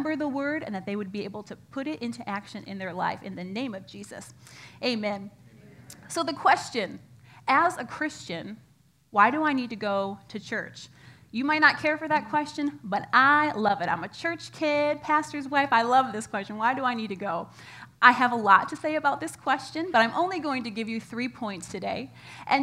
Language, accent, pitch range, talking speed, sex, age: English, American, 200-265 Hz, 220 wpm, female, 30-49